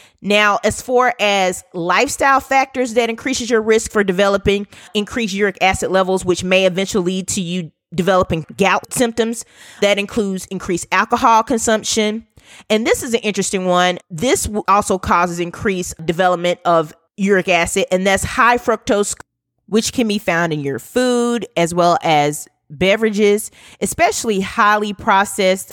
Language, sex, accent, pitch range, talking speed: English, female, American, 175-215 Hz, 145 wpm